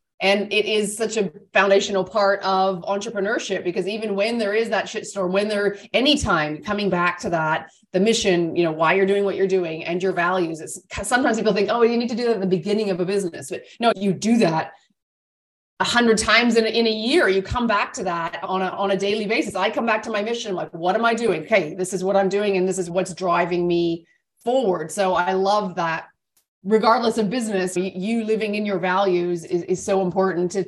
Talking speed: 225 wpm